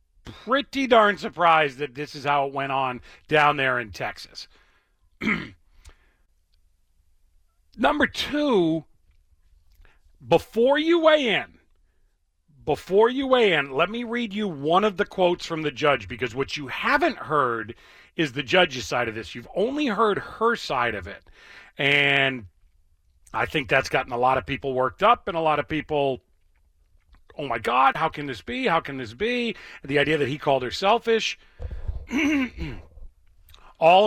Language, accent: English, American